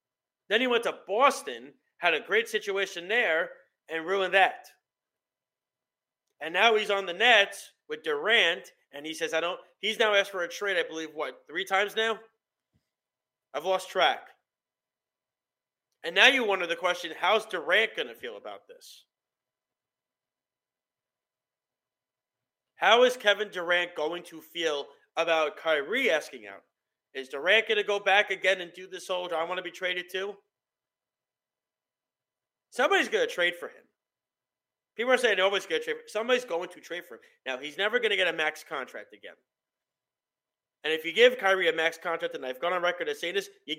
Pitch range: 170-220 Hz